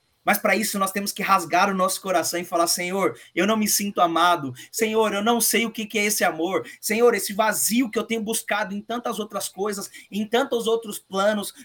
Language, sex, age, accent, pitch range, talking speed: Portuguese, male, 20-39, Brazilian, 175-220 Hz, 215 wpm